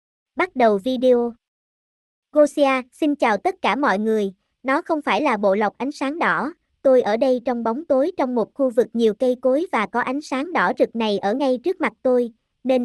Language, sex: Vietnamese, male